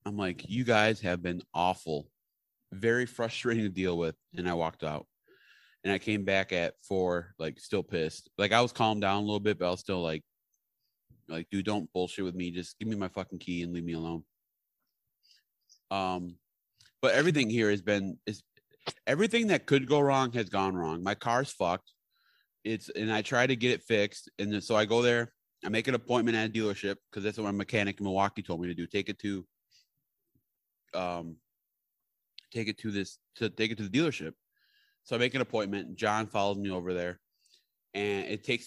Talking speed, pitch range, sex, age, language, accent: 200 wpm, 95-125 Hz, male, 30-49, English, American